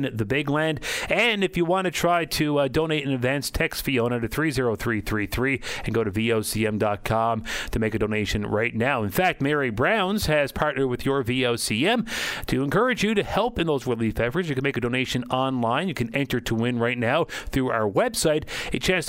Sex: male